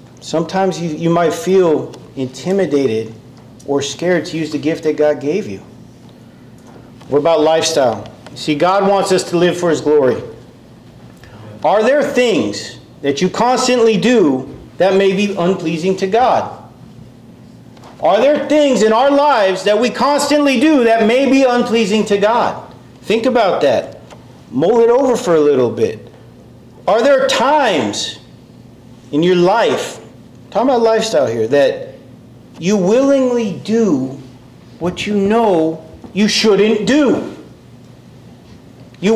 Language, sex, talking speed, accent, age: English, male, 135 wpm, American, 40-59